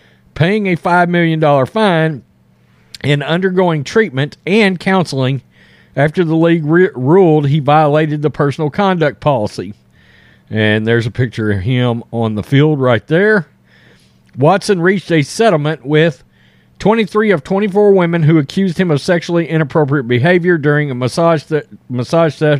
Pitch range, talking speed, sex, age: 125-175 Hz, 135 wpm, male, 50-69